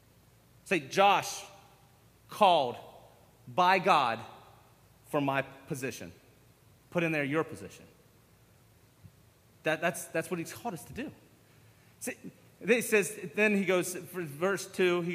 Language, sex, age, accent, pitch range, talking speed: English, male, 30-49, American, 175-225 Hz, 120 wpm